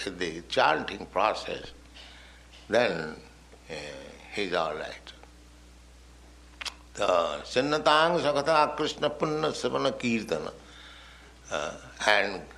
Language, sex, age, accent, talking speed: English, male, 60-79, Indian, 60 wpm